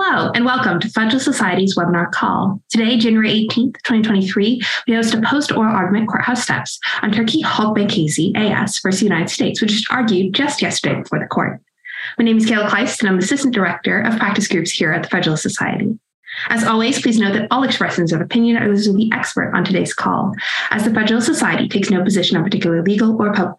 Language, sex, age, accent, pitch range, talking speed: English, female, 20-39, American, 190-235 Hz, 210 wpm